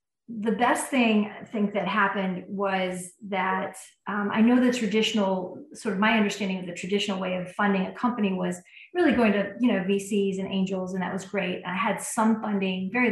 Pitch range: 185-220 Hz